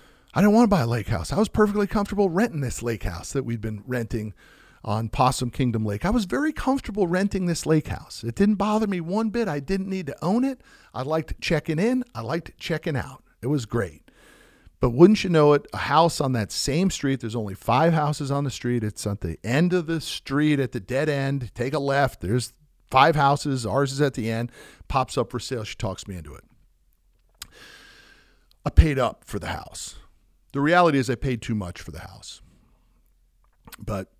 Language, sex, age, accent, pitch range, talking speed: English, male, 50-69, American, 115-155 Hz, 210 wpm